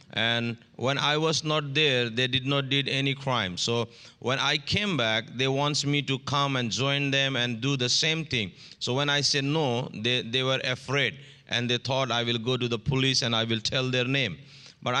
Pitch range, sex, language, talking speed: 120-140 Hz, male, English, 220 wpm